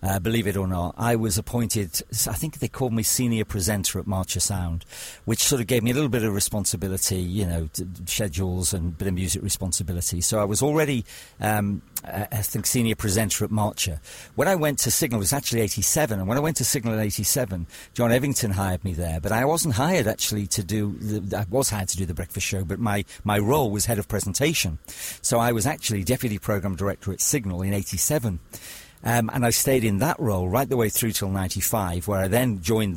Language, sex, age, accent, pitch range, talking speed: English, male, 50-69, British, 95-115 Hz, 230 wpm